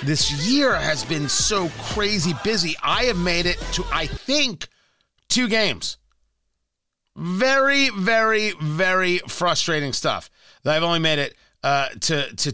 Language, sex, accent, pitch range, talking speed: English, male, American, 125-190 Hz, 135 wpm